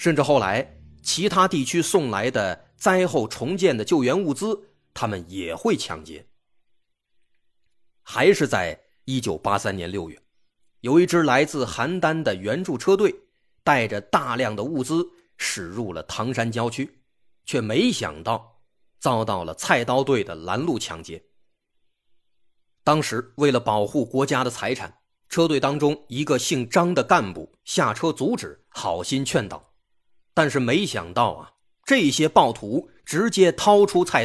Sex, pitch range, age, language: male, 110-170 Hz, 30-49, Chinese